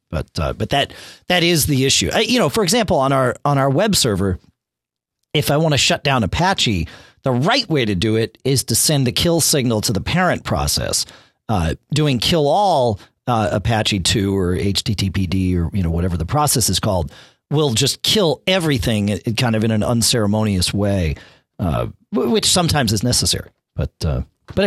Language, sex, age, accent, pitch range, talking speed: English, male, 40-59, American, 105-170 Hz, 185 wpm